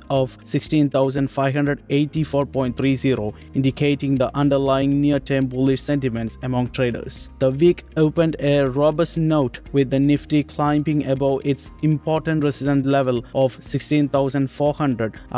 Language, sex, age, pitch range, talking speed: Malayalam, male, 20-39, 135-150 Hz, 105 wpm